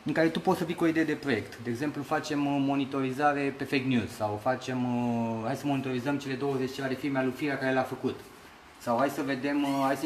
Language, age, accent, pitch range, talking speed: Romanian, 20-39, native, 135-170 Hz, 240 wpm